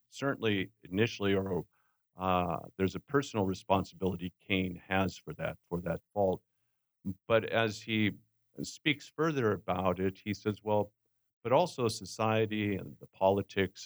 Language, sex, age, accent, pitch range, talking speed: English, male, 50-69, American, 95-110 Hz, 135 wpm